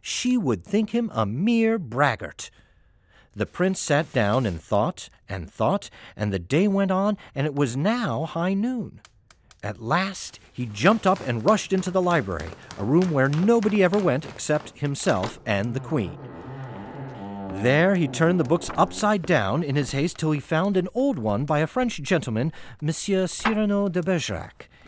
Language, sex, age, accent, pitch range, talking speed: English, male, 40-59, American, 120-190 Hz, 170 wpm